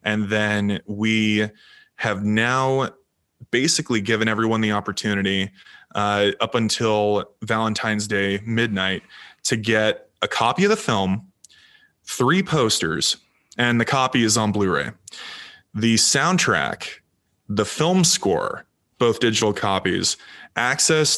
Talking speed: 115 wpm